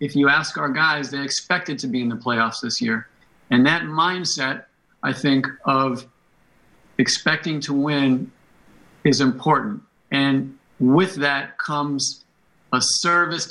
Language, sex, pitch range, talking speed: English, male, 135-155 Hz, 140 wpm